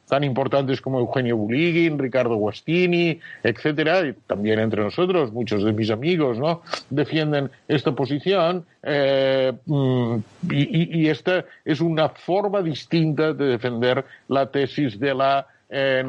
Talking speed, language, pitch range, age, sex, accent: 125 wpm, Spanish, 120-150 Hz, 60-79, male, Spanish